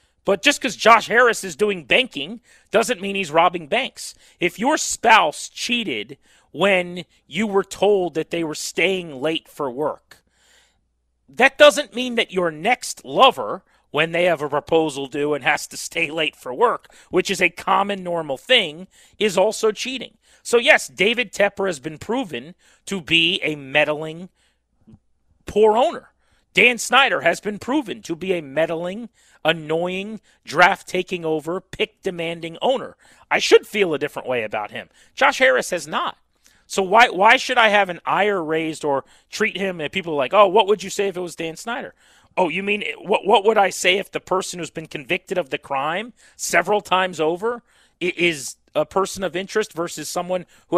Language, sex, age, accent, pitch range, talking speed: English, male, 40-59, American, 160-215 Hz, 175 wpm